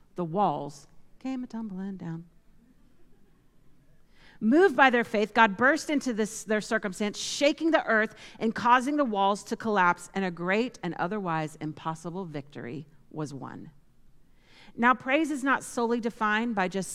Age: 40-59